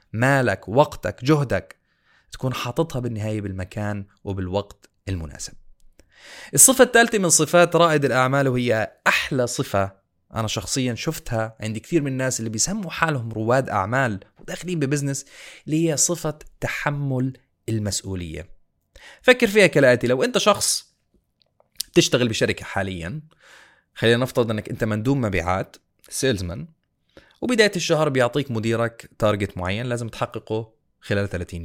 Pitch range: 105-145 Hz